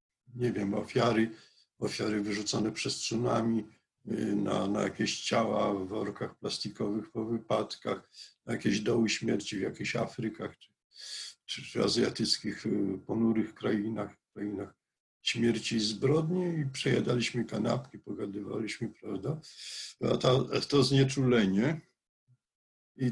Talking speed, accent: 105 wpm, native